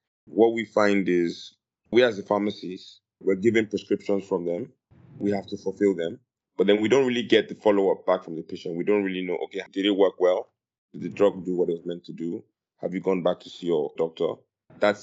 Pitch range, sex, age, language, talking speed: 95-115 Hz, male, 20-39, English, 235 wpm